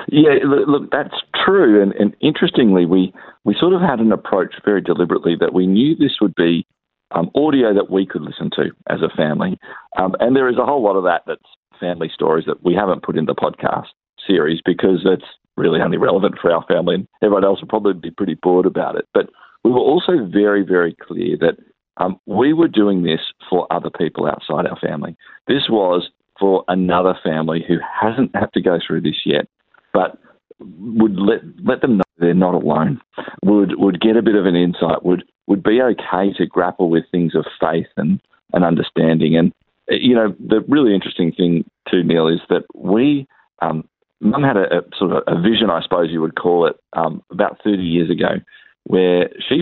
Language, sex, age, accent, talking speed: English, male, 50-69, Australian, 200 wpm